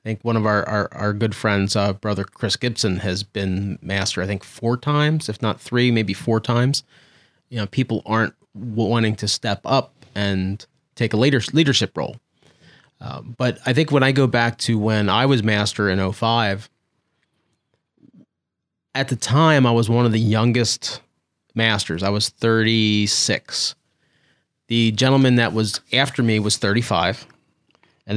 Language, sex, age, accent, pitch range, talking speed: English, male, 30-49, American, 105-125 Hz, 160 wpm